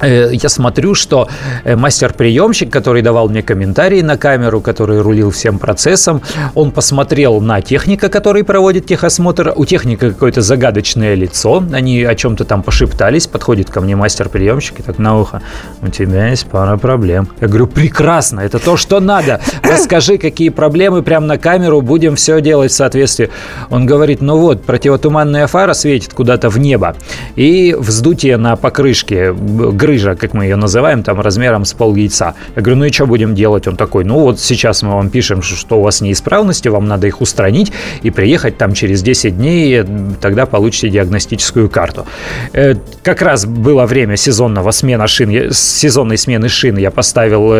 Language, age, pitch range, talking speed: Russian, 30-49, 105-150 Hz, 165 wpm